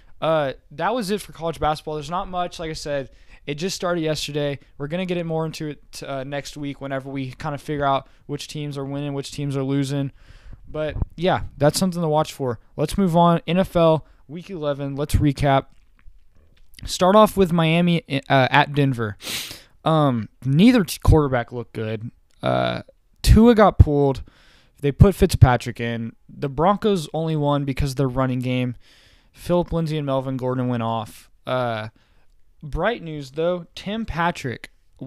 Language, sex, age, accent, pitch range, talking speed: English, male, 20-39, American, 130-170 Hz, 170 wpm